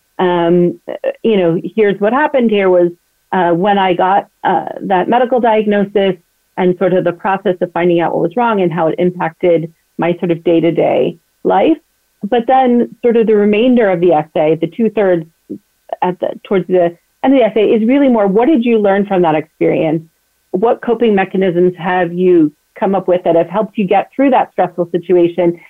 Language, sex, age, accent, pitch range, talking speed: English, female, 40-59, American, 175-215 Hz, 190 wpm